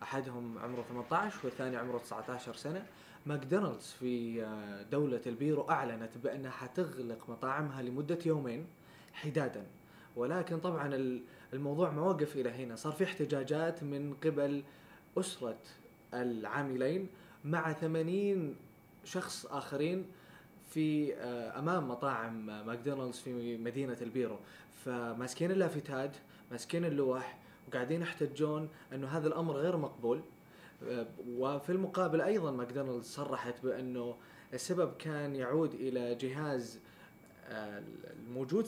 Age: 20-39